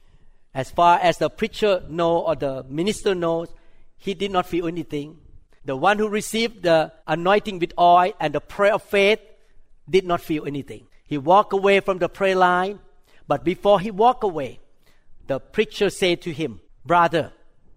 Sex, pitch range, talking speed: male, 170-220 Hz, 170 wpm